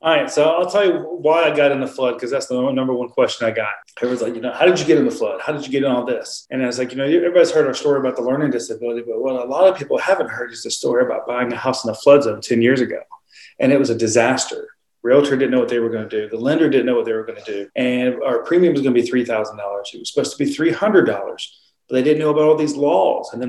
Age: 30-49